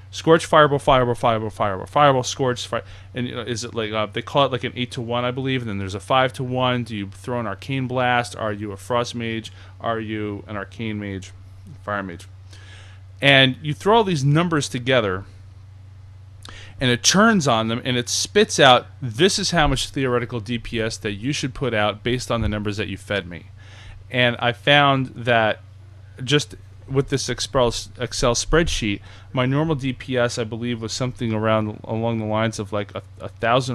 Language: English